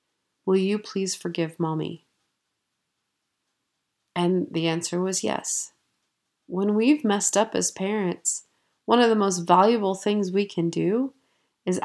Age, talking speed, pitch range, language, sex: 30-49, 130 wpm, 175-215 Hz, English, female